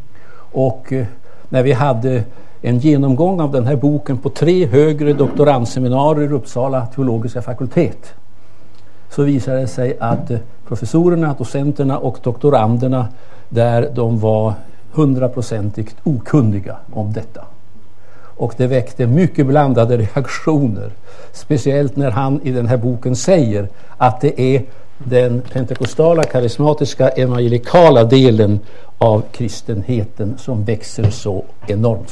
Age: 60-79